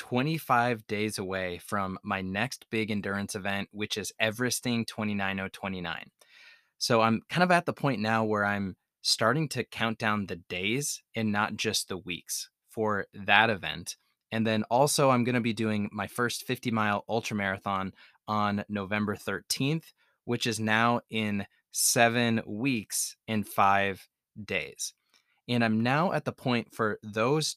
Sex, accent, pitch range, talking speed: male, American, 100-120 Hz, 155 wpm